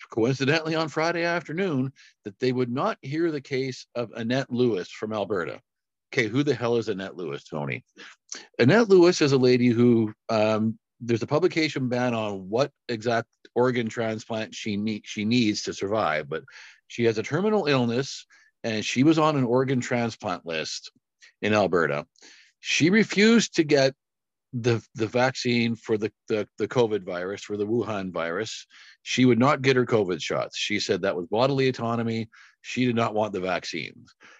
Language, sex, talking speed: English, male, 170 wpm